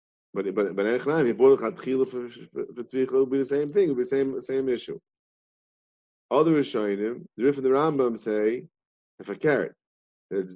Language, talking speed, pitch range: English, 200 wpm, 110-145 Hz